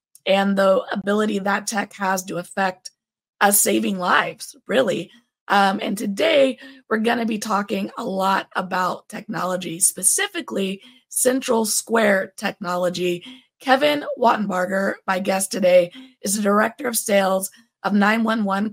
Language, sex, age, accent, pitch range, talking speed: English, female, 20-39, American, 190-245 Hz, 125 wpm